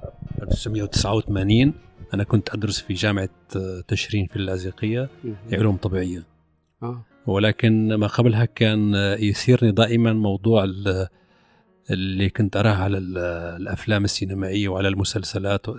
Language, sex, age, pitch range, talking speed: Arabic, male, 40-59, 95-115 Hz, 100 wpm